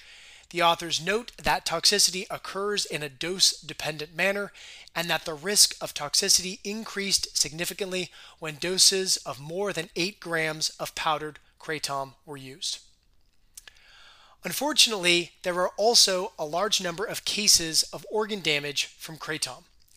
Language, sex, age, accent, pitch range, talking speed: English, male, 30-49, American, 155-195 Hz, 130 wpm